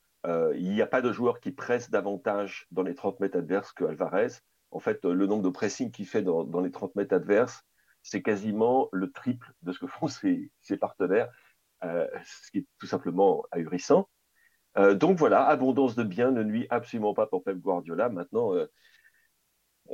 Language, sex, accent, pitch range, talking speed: French, male, French, 110-175 Hz, 195 wpm